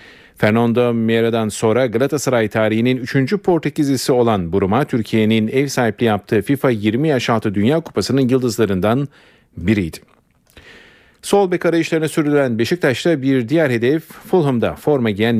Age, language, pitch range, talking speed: 40-59, Turkish, 115-140 Hz, 125 wpm